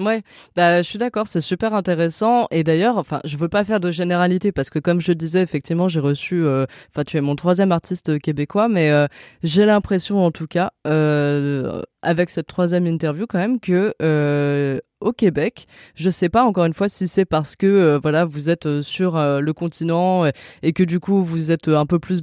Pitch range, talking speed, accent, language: 165-210 Hz, 225 wpm, French, French